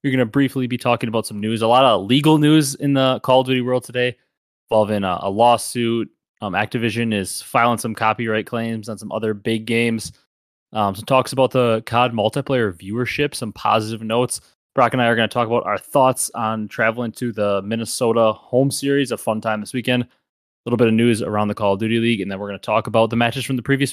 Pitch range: 105-125 Hz